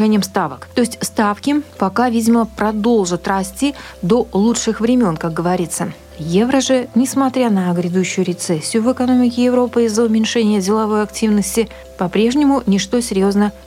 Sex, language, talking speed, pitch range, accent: female, Russian, 125 wpm, 185-235 Hz, native